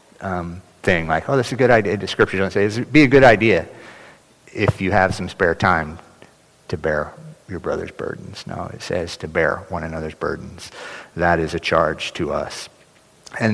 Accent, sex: American, male